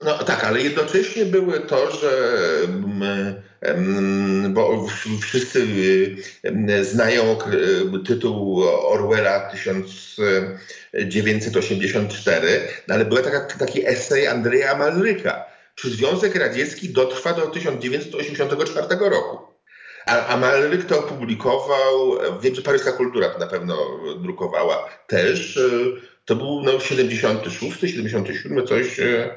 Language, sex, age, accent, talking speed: Polish, male, 50-69, native, 90 wpm